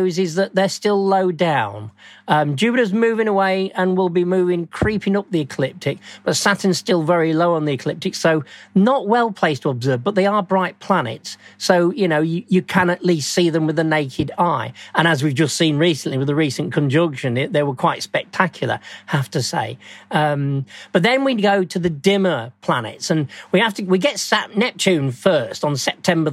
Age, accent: 40-59, British